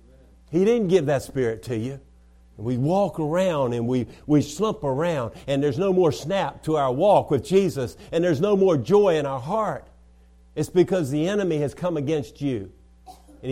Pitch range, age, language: 125-185 Hz, 50-69, English